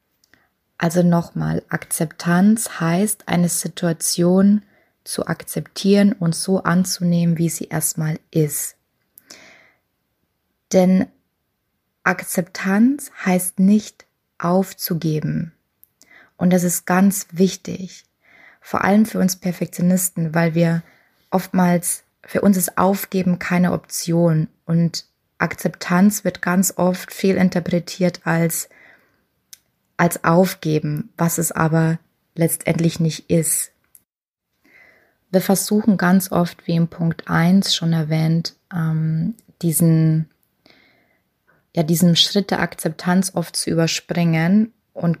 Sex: female